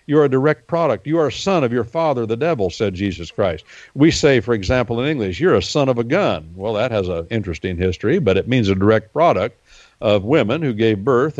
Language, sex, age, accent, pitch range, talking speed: English, male, 60-79, American, 100-140 Hz, 240 wpm